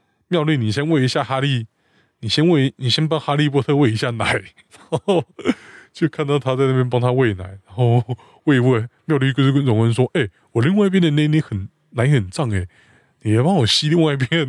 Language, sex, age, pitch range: Chinese, male, 20-39, 110-150 Hz